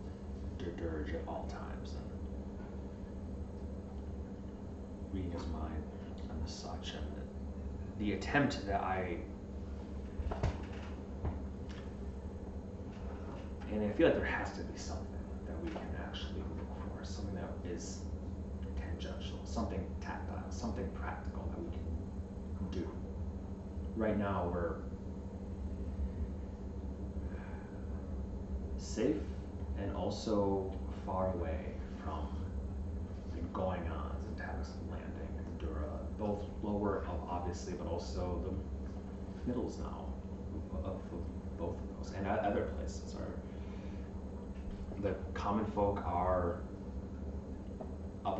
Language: English